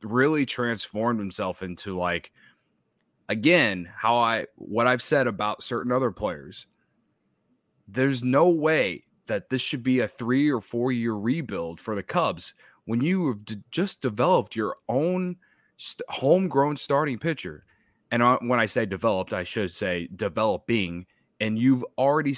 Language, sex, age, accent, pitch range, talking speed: English, male, 20-39, American, 105-130 Hz, 140 wpm